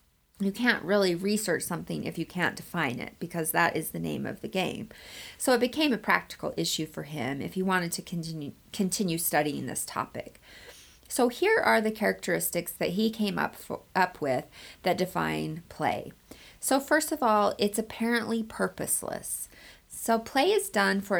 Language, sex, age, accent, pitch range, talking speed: English, female, 30-49, American, 180-230 Hz, 175 wpm